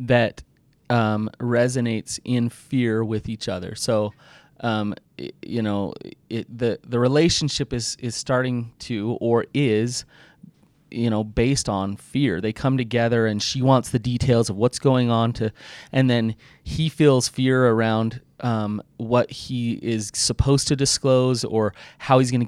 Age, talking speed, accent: 30-49, 155 wpm, American